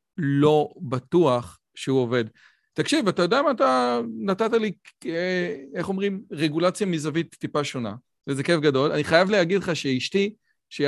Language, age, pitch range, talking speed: Hebrew, 40-59, 150-185 Hz, 145 wpm